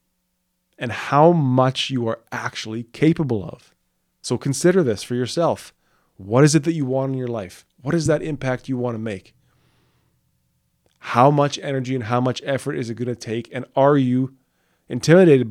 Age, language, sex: 20-39, English, male